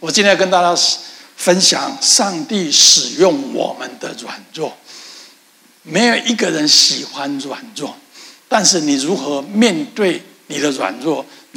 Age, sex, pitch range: 60-79, male, 175-260 Hz